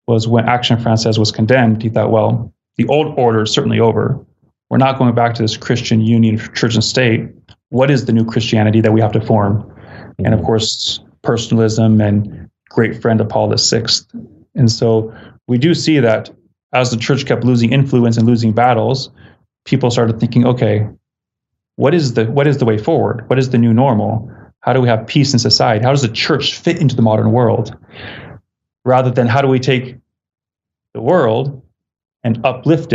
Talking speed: 190 wpm